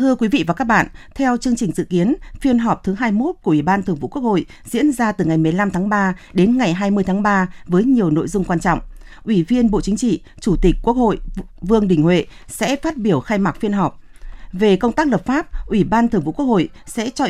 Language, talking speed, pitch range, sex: Vietnamese, 250 wpm, 175-230 Hz, female